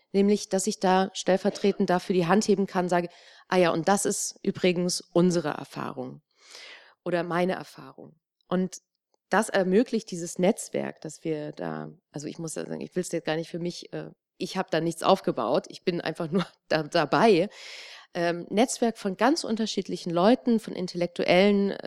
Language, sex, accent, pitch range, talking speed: German, female, German, 180-225 Hz, 160 wpm